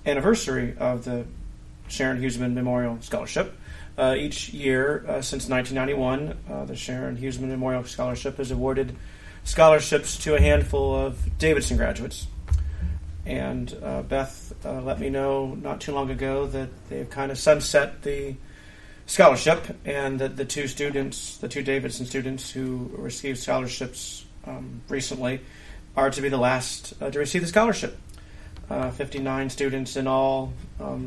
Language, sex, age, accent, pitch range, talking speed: English, male, 40-59, American, 125-140 Hz, 145 wpm